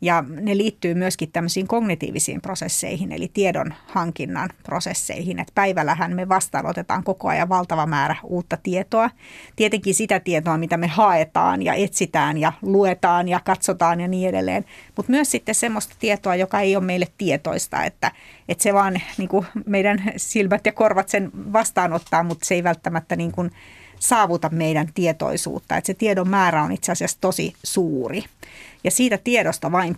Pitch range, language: 170-205 Hz, Finnish